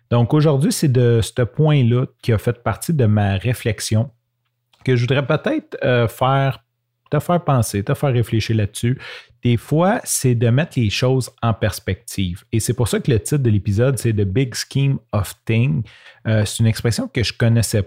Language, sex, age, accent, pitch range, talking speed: French, male, 30-49, Canadian, 100-125 Hz, 190 wpm